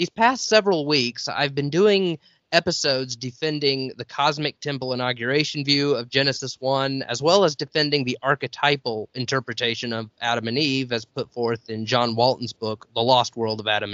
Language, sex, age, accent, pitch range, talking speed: English, male, 20-39, American, 120-150 Hz, 170 wpm